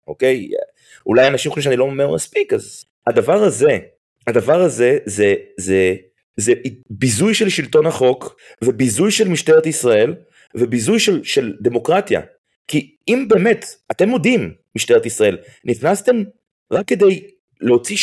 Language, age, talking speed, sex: Hebrew, 30-49, 135 wpm, male